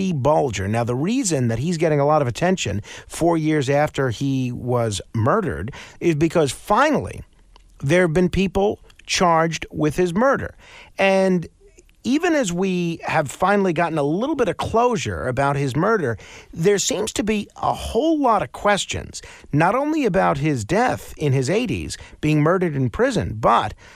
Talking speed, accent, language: 160 wpm, American, English